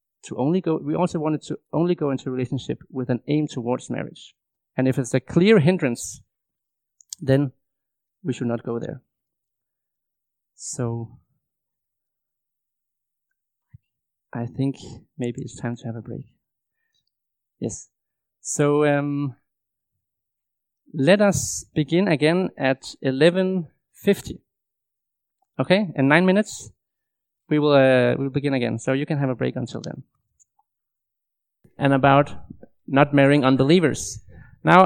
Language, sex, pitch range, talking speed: English, male, 125-165 Hz, 125 wpm